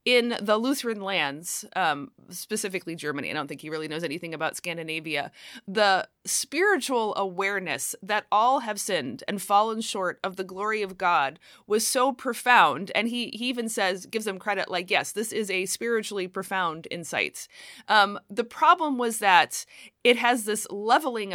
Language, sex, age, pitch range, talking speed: English, female, 30-49, 180-235 Hz, 165 wpm